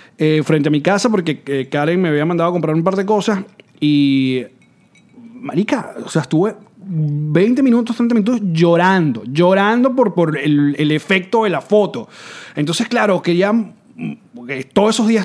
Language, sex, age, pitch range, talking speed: Spanish, male, 30-49, 165-220 Hz, 170 wpm